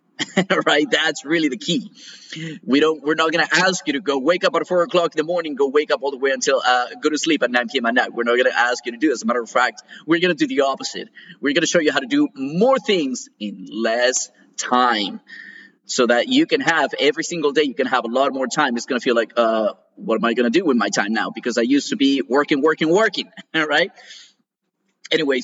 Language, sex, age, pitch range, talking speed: English, male, 30-49, 135-220 Hz, 270 wpm